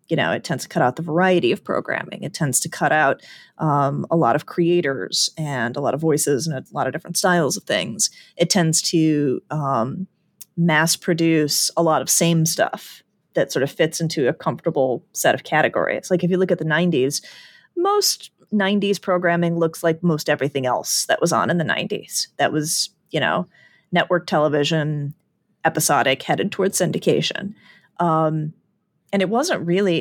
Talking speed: 180 wpm